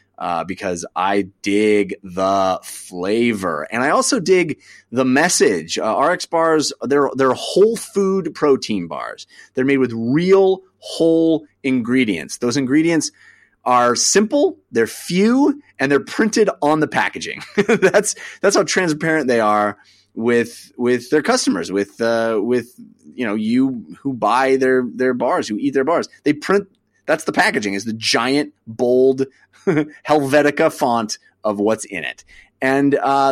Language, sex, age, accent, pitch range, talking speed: English, male, 30-49, American, 120-175 Hz, 145 wpm